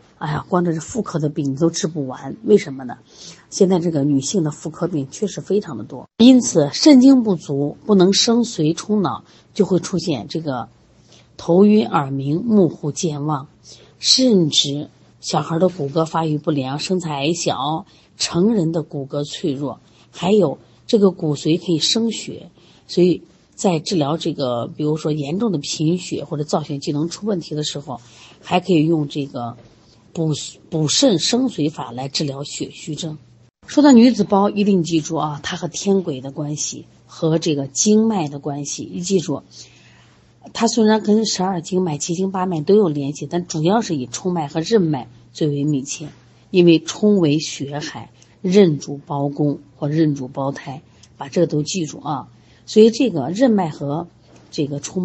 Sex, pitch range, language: female, 145-185 Hz, Chinese